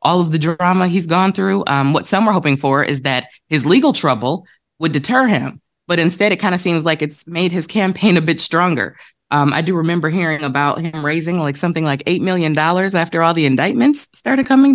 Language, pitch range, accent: English, 140-170 Hz, American